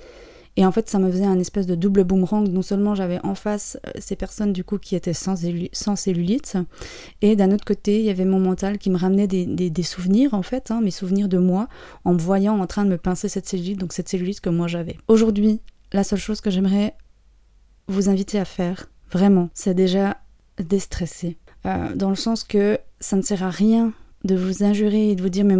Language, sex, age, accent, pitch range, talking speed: French, female, 20-39, French, 180-205 Hz, 225 wpm